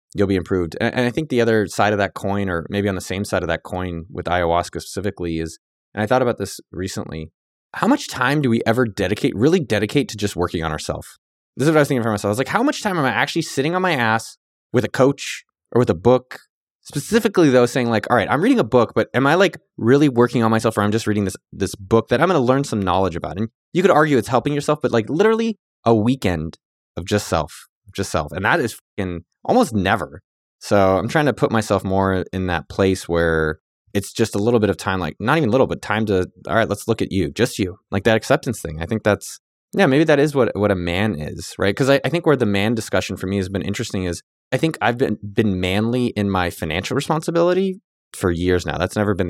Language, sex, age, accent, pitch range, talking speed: English, male, 20-39, American, 95-130 Hz, 255 wpm